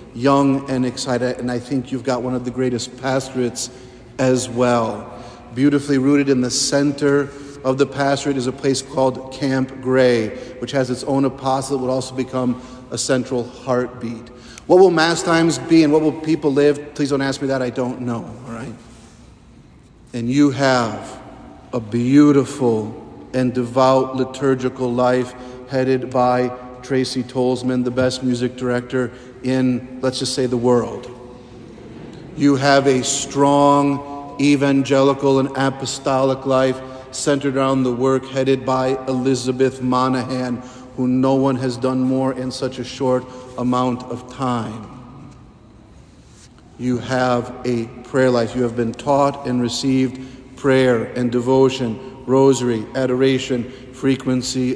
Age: 50-69